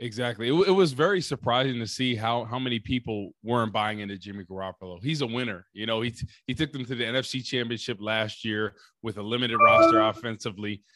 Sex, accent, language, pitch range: male, American, English, 105-125 Hz